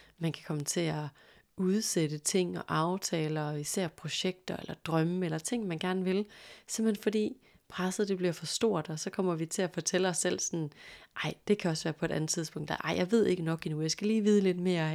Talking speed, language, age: 230 wpm, Danish, 30-49